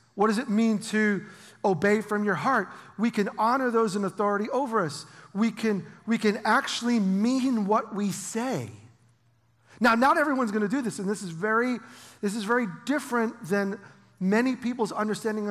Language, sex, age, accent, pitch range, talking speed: English, male, 40-59, American, 175-225 Hz, 170 wpm